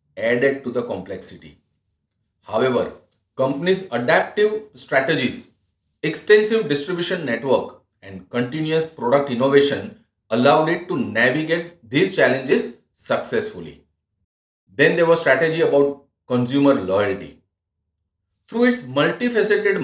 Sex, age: male, 40-59